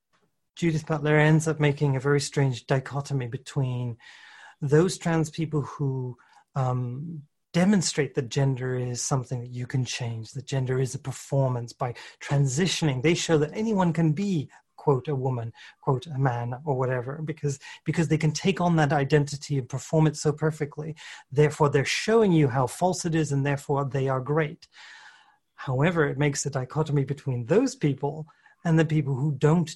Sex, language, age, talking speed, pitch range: male, English, 40-59, 170 wpm, 135-160 Hz